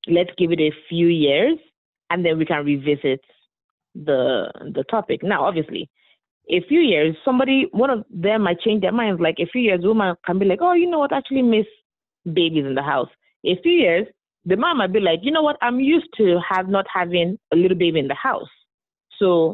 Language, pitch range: English, 160-215 Hz